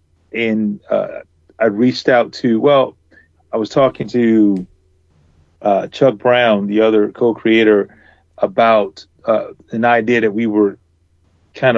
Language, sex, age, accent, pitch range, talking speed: English, male, 40-59, American, 90-115 Hz, 125 wpm